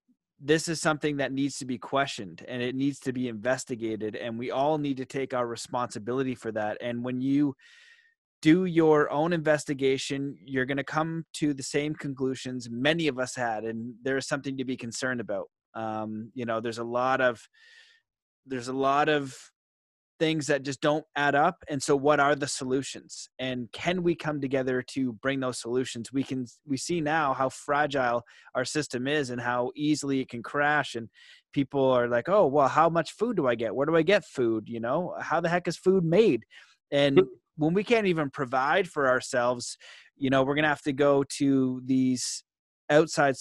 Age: 20-39